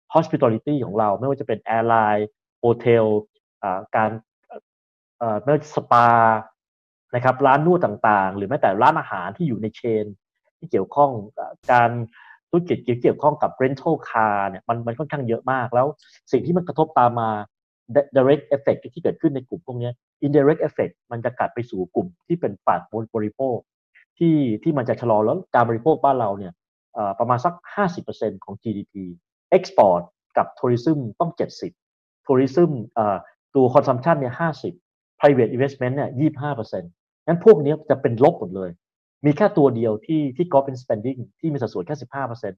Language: Thai